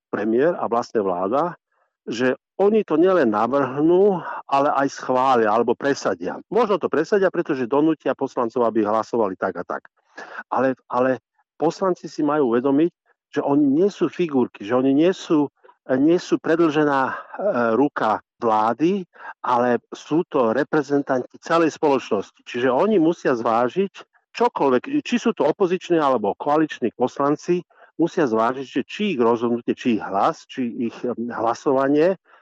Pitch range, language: 120-165 Hz, Slovak